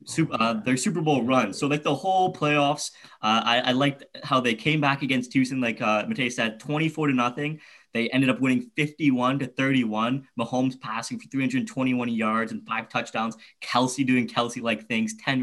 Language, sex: English, male